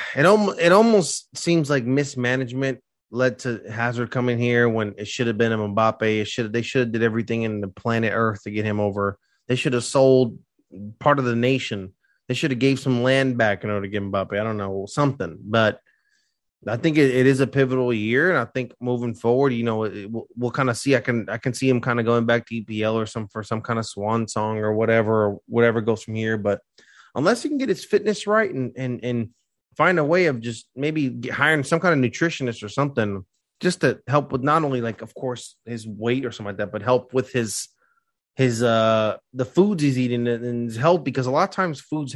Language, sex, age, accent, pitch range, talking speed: English, male, 20-39, American, 110-135 Hz, 235 wpm